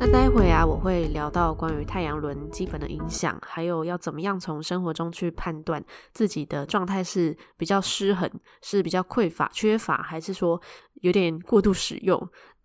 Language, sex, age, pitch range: Chinese, female, 10-29, 160-195 Hz